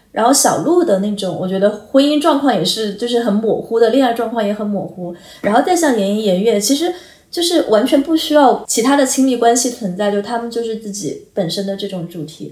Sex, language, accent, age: female, Chinese, native, 20-39